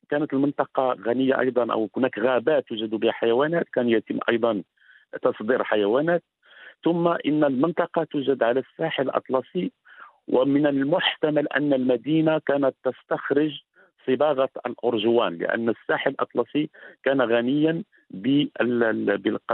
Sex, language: male, Arabic